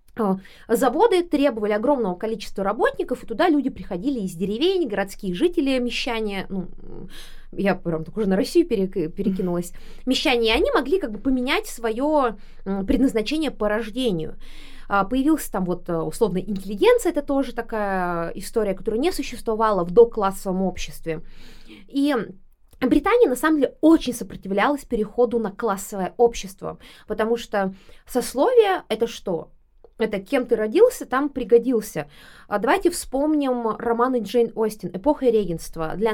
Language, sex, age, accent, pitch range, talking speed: Russian, female, 20-39, native, 195-265 Hz, 130 wpm